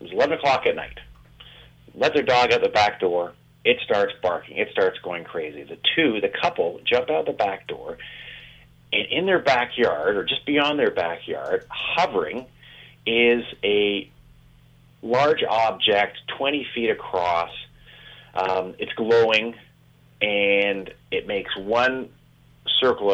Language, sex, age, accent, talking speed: English, male, 30-49, American, 140 wpm